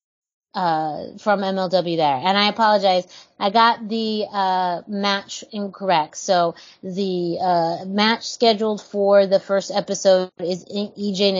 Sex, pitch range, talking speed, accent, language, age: female, 170-205 Hz, 125 wpm, American, English, 30-49